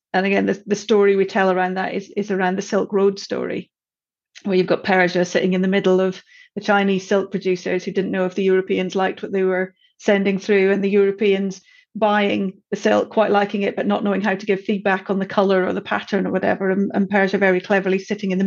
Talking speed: 235 wpm